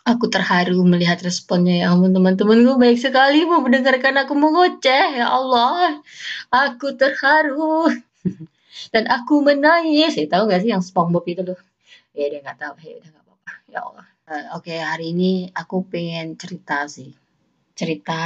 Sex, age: female, 20-39